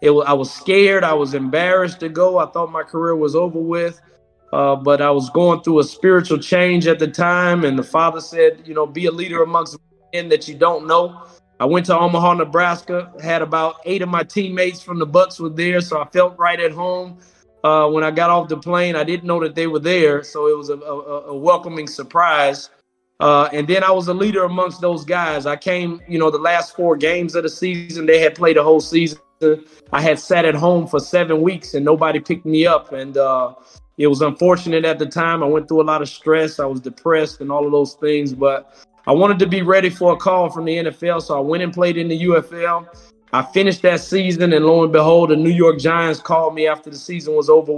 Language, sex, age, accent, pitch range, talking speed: English, male, 30-49, American, 150-175 Hz, 235 wpm